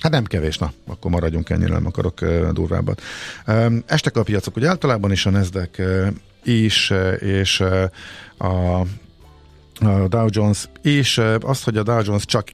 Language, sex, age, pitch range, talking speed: Hungarian, male, 50-69, 90-110 Hz, 150 wpm